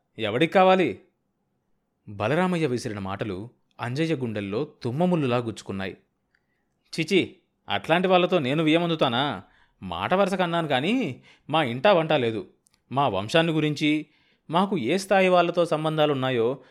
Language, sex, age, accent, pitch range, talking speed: Telugu, male, 30-49, native, 115-170 Hz, 100 wpm